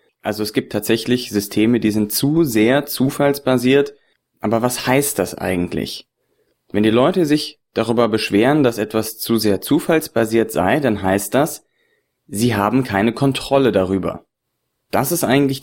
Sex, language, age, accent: male, German, 30-49, German